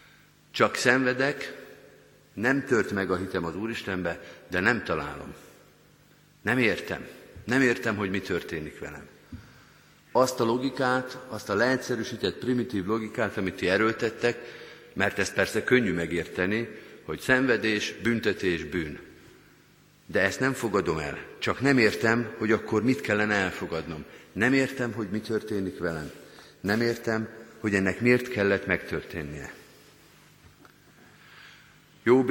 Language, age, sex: Hungarian, 50-69, male